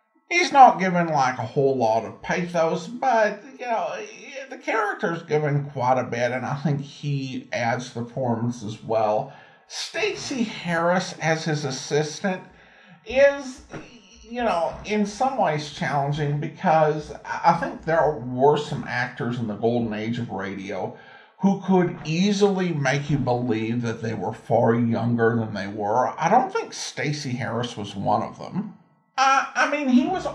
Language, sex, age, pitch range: English, male, 50-69, 125-190 Hz